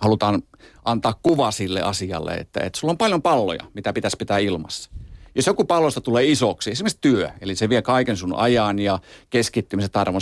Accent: native